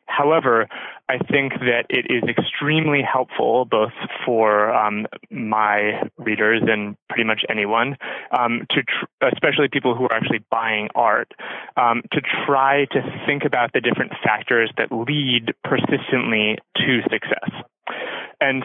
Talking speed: 130 wpm